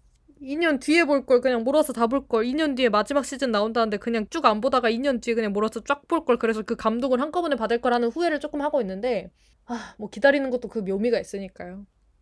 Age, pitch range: 20-39, 210-285 Hz